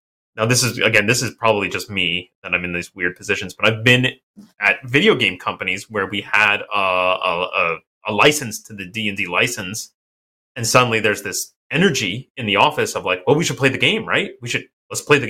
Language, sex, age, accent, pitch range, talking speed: English, male, 30-49, American, 95-135 Hz, 215 wpm